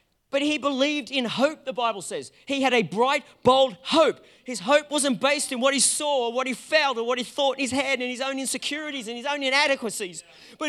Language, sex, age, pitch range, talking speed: English, male, 40-59, 195-275 Hz, 235 wpm